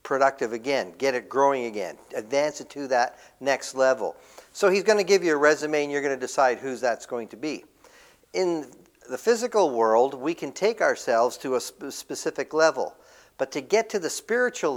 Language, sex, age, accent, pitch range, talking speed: English, male, 50-69, American, 135-185 Hz, 200 wpm